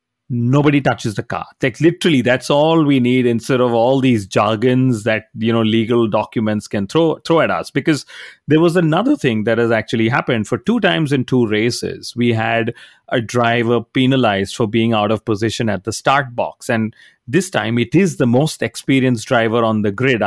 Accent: Indian